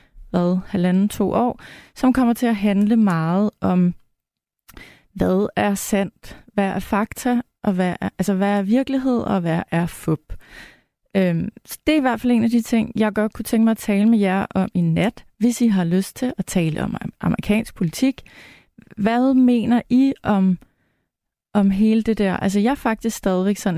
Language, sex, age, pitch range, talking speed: Danish, female, 30-49, 185-225 Hz, 180 wpm